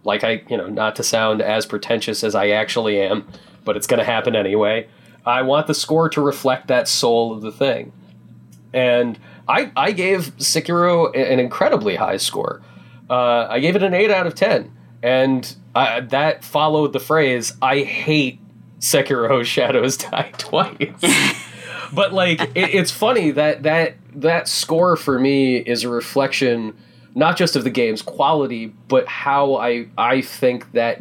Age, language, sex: 30-49, English, male